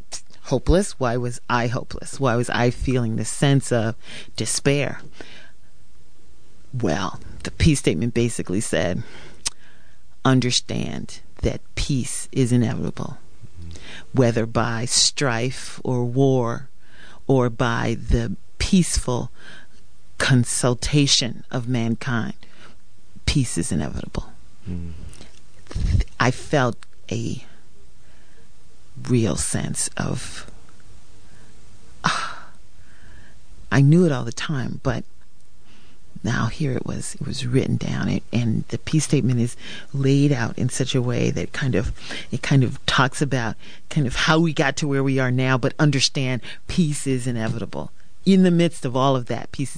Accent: American